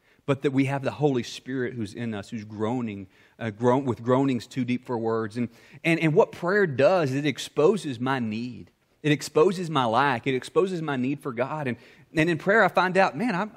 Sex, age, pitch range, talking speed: male, 30-49, 120-185 Hz, 220 wpm